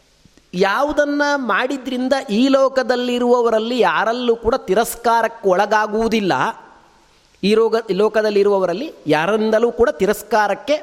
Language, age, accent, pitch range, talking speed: Kannada, 30-49, native, 205-245 Hz, 80 wpm